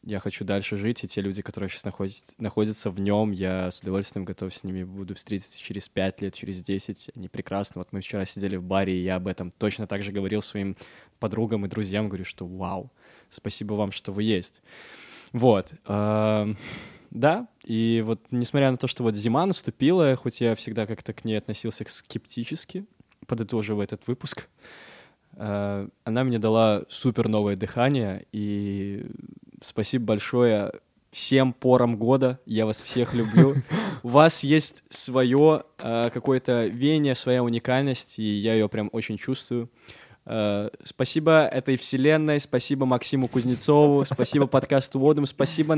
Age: 20-39